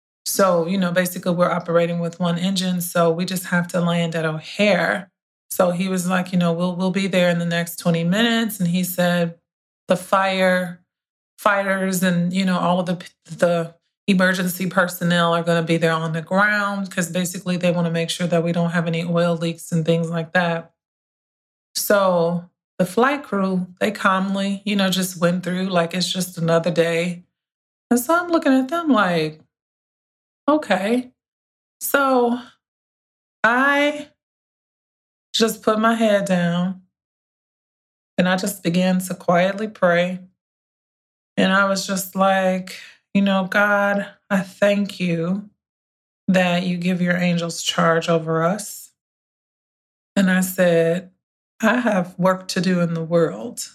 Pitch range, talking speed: 170-195 Hz, 155 wpm